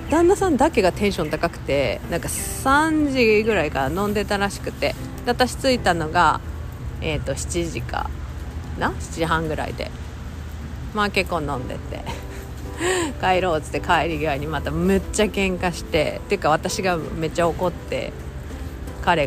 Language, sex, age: Japanese, female, 40-59